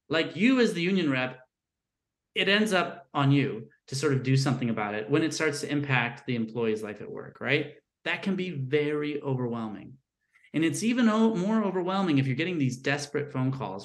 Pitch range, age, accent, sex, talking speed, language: 125-180 Hz, 30-49, American, male, 200 wpm, English